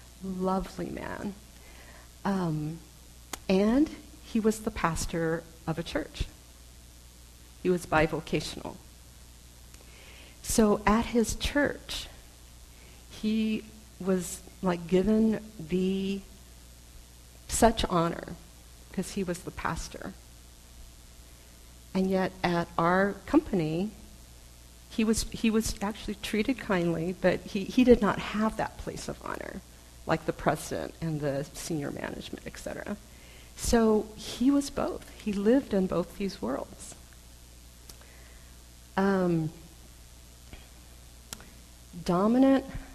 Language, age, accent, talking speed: English, 50-69, American, 100 wpm